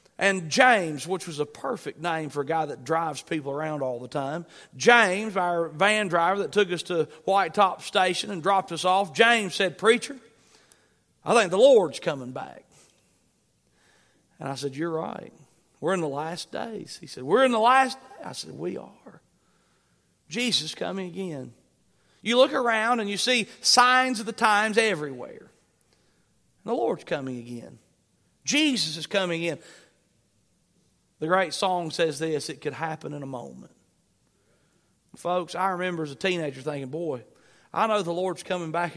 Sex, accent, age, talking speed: male, American, 40-59, 170 wpm